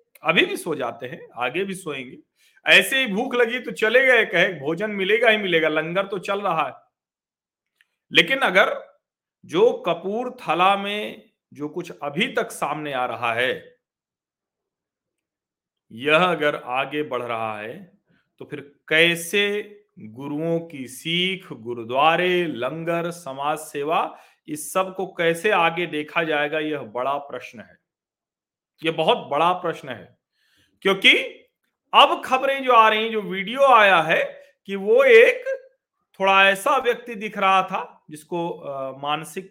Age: 40-59